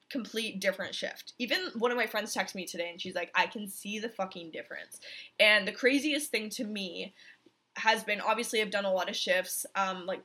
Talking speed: 215 wpm